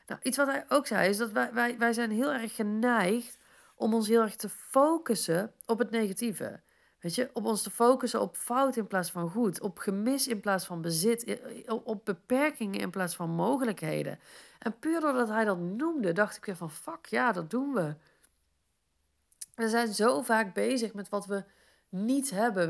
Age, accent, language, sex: 40-59, Dutch, Dutch, female